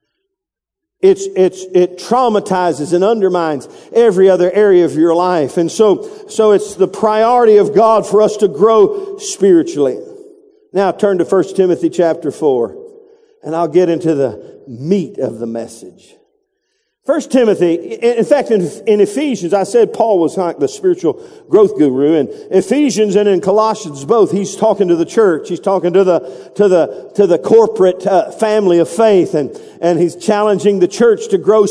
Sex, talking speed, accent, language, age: male, 170 wpm, American, English, 50-69